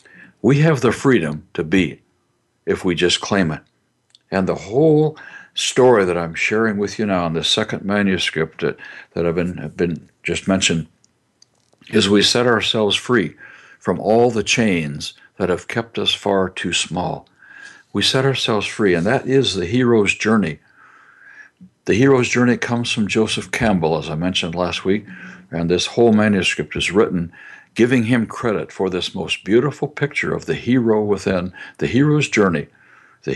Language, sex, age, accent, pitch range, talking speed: English, male, 60-79, American, 95-125 Hz, 165 wpm